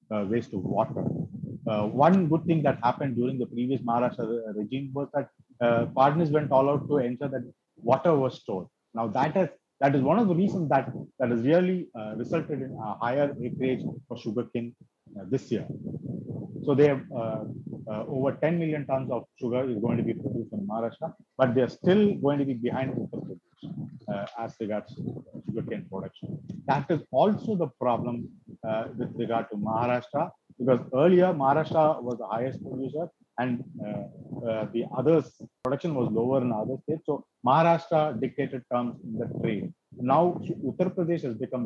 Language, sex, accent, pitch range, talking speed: English, male, Indian, 120-155 Hz, 175 wpm